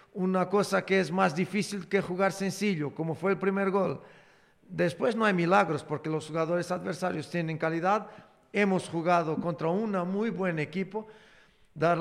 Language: Spanish